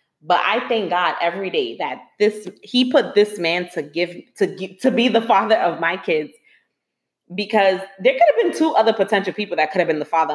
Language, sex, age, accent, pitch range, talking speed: English, female, 30-49, American, 170-230 Hz, 215 wpm